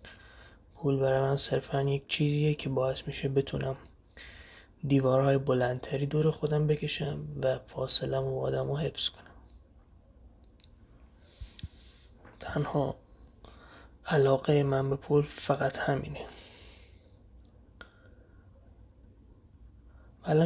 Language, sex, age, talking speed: Persian, male, 20-39, 80 wpm